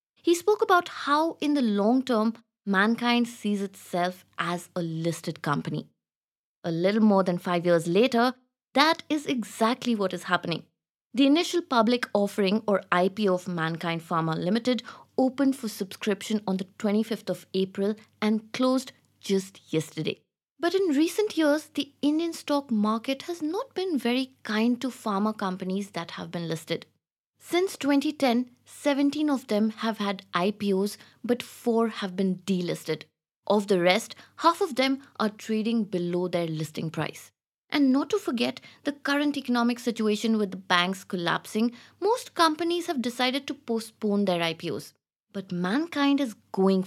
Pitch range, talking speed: 180-265 Hz, 150 wpm